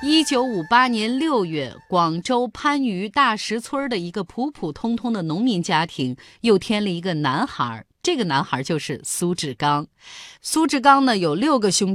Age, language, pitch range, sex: 30-49, Chinese, 170-250 Hz, female